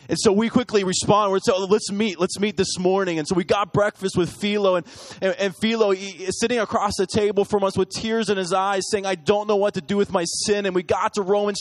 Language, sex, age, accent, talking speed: English, male, 30-49, American, 270 wpm